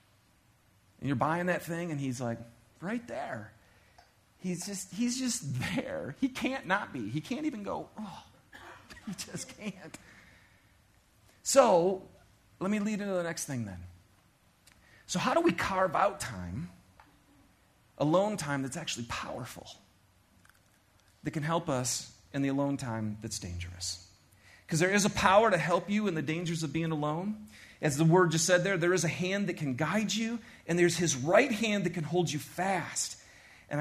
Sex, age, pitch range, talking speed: male, 40-59, 120-195 Hz, 170 wpm